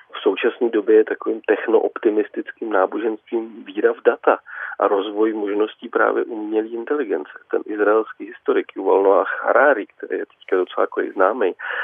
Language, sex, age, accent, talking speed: Czech, male, 40-59, native, 140 wpm